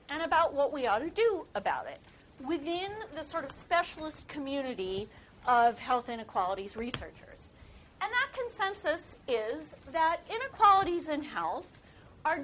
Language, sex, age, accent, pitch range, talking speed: English, female, 40-59, American, 220-330 Hz, 135 wpm